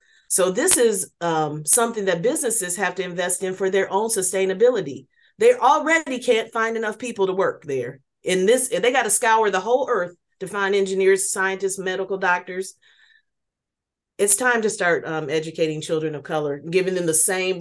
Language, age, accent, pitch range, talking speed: English, 30-49, American, 170-225 Hz, 175 wpm